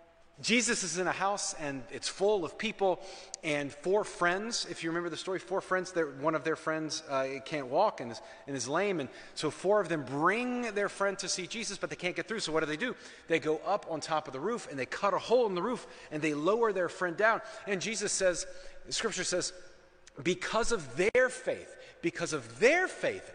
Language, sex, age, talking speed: English, male, 30-49, 225 wpm